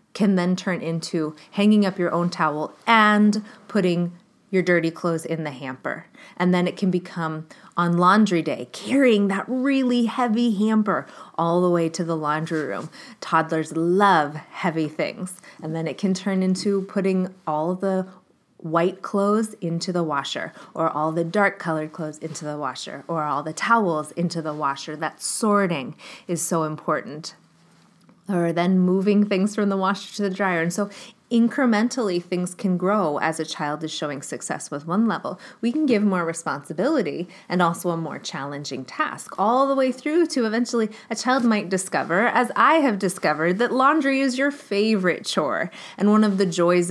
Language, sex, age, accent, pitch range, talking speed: English, female, 20-39, American, 165-210 Hz, 175 wpm